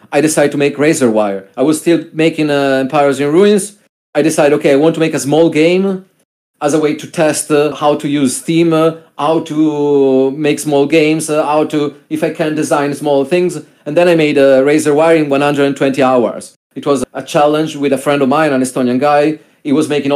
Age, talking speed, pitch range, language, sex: 40-59, 215 wpm, 135-165 Hz, Turkish, male